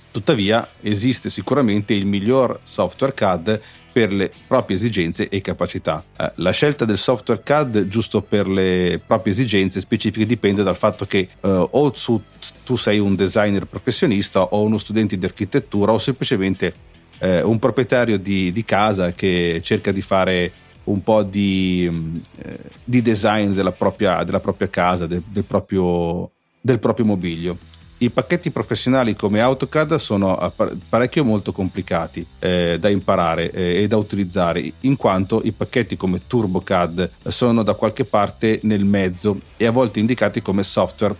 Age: 40-59